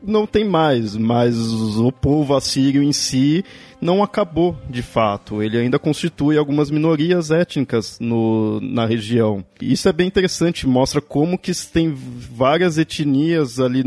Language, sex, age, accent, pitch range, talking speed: Portuguese, male, 20-39, Brazilian, 120-165 Hz, 145 wpm